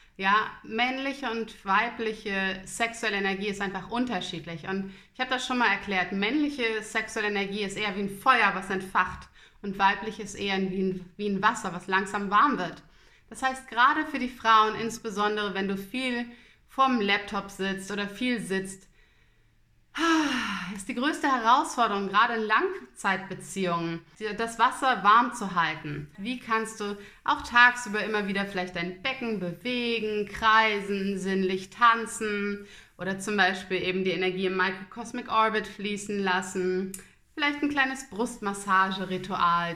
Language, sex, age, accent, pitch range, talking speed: German, female, 30-49, German, 190-245 Hz, 150 wpm